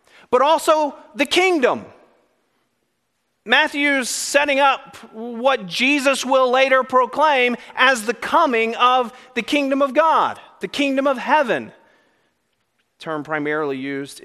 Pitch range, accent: 210-255 Hz, American